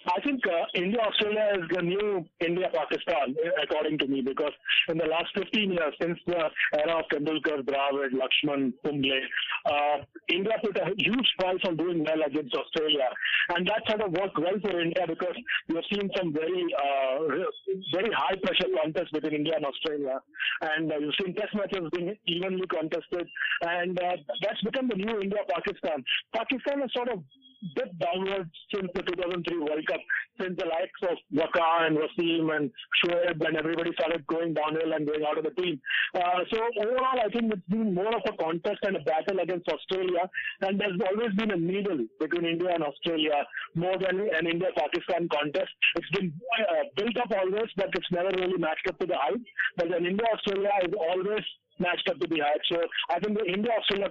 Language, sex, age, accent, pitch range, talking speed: English, male, 50-69, Indian, 160-205 Hz, 185 wpm